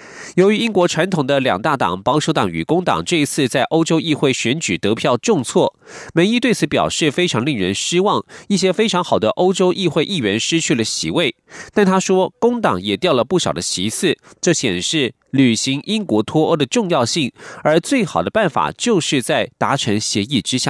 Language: German